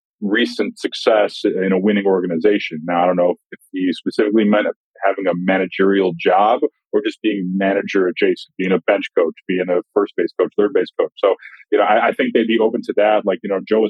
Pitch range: 95-110 Hz